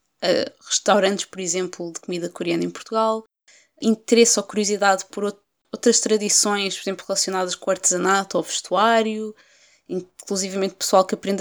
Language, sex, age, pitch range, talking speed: Portuguese, female, 20-39, 195-230 Hz, 135 wpm